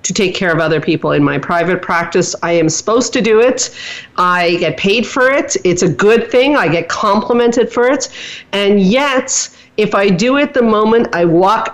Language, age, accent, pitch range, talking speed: English, 40-59, American, 170-220 Hz, 205 wpm